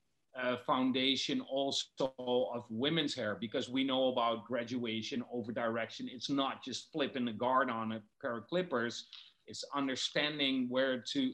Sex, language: male, English